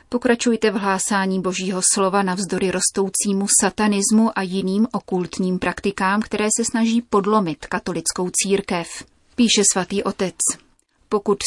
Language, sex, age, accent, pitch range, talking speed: Czech, female, 30-49, native, 185-215 Hz, 115 wpm